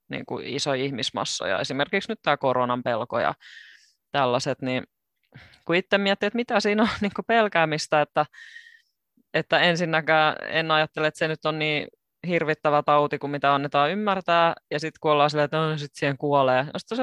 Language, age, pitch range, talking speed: Finnish, 20-39, 135-195 Hz, 180 wpm